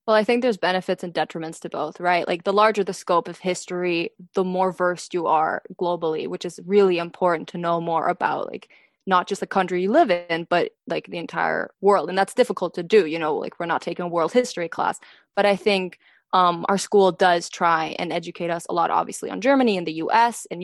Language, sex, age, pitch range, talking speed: English, female, 20-39, 175-200 Hz, 230 wpm